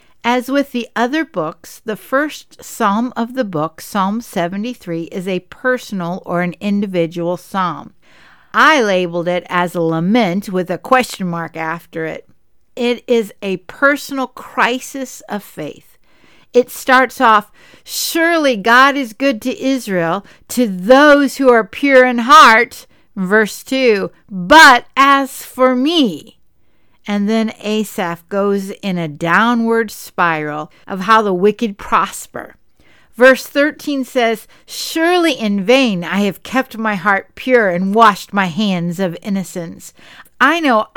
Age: 60-79